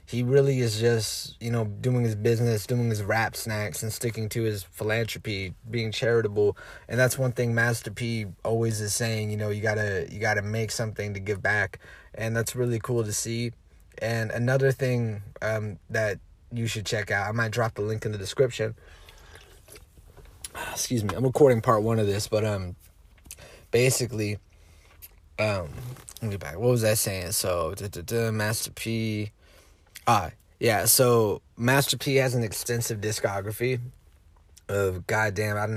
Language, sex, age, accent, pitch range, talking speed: English, male, 30-49, American, 105-125 Hz, 175 wpm